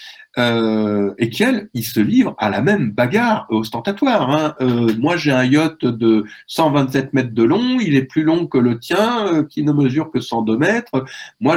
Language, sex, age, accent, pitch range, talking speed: French, male, 50-69, French, 110-160 Hz, 190 wpm